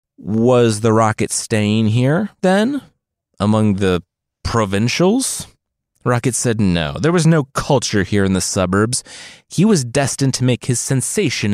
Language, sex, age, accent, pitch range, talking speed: English, male, 30-49, American, 95-135 Hz, 140 wpm